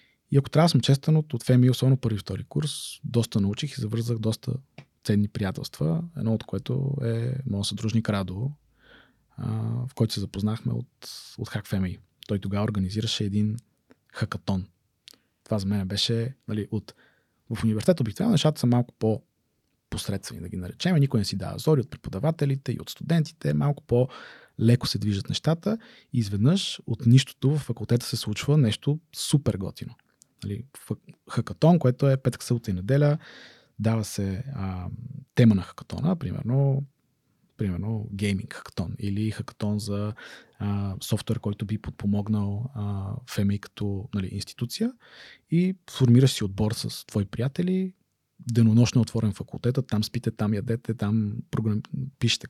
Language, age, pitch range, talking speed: Bulgarian, 20-39, 105-135 Hz, 145 wpm